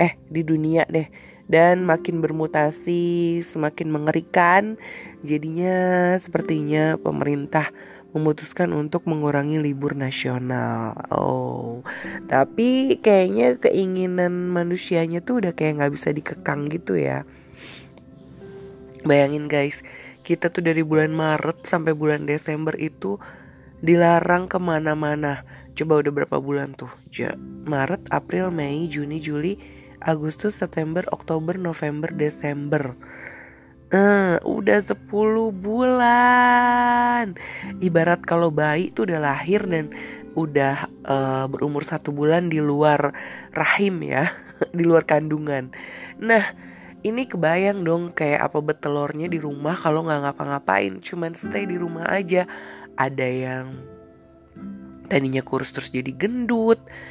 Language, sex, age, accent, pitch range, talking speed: Indonesian, female, 20-39, native, 145-175 Hz, 110 wpm